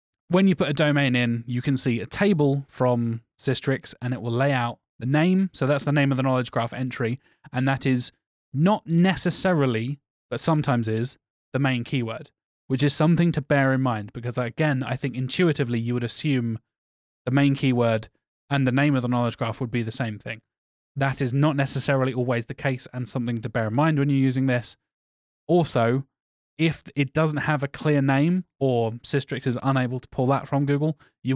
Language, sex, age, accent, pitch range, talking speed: English, male, 20-39, British, 120-145 Hz, 200 wpm